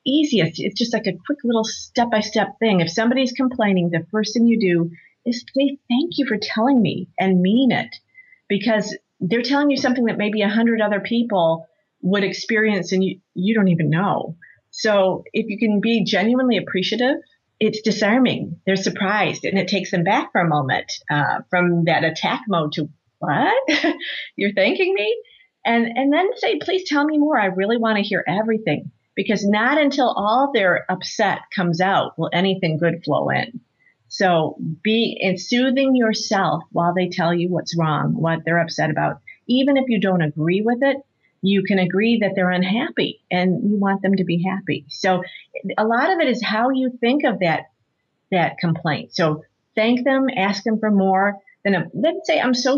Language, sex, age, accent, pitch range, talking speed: English, female, 40-59, American, 180-245 Hz, 185 wpm